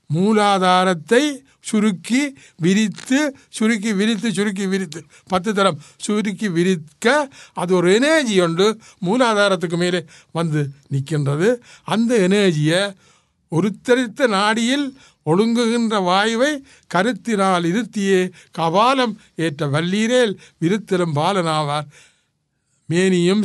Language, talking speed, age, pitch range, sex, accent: Tamil, 85 wpm, 60-79, 155-215 Hz, male, native